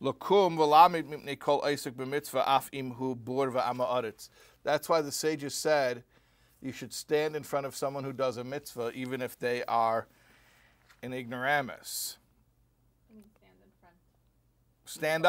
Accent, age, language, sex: American, 50-69, English, male